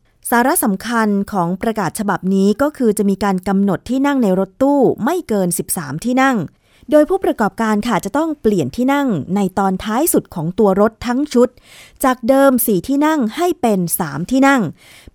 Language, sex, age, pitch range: Thai, female, 20-39, 185-240 Hz